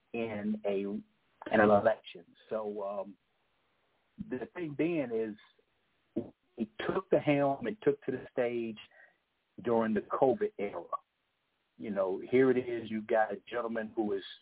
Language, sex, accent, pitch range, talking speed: English, male, American, 105-135 Hz, 145 wpm